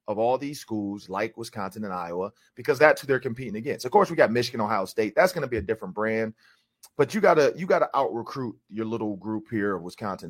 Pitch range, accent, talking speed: 110-155 Hz, American, 240 wpm